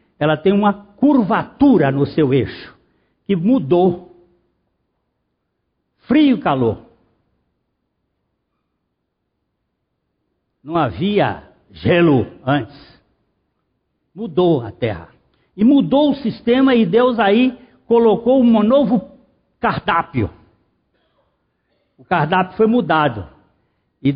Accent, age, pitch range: Brazilian, 60-79, 170-255 Hz